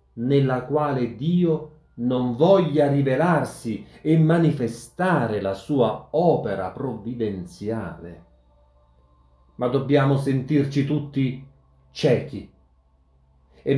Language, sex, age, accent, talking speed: Italian, male, 40-59, native, 80 wpm